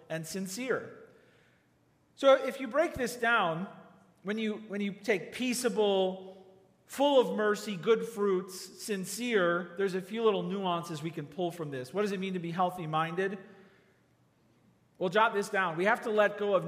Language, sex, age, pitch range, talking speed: English, male, 40-59, 150-195 Hz, 165 wpm